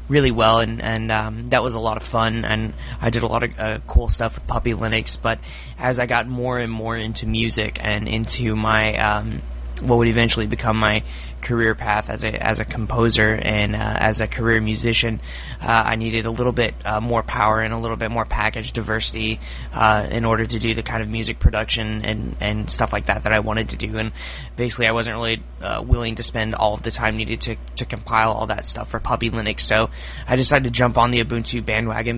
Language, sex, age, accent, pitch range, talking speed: English, male, 20-39, American, 110-115 Hz, 230 wpm